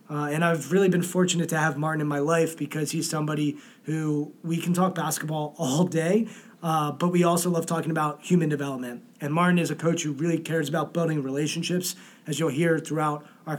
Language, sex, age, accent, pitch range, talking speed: English, male, 20-39, American, 150-180 Hz, 210 wpm